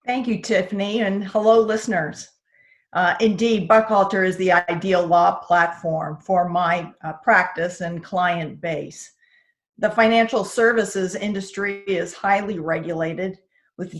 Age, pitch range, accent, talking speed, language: 50-69, 180-215 Hz, American, 125 wpm, English